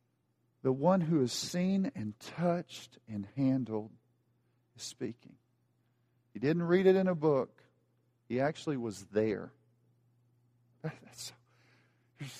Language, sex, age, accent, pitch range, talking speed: English, male, 40-59, American, 150-240 Hz, 115 wpm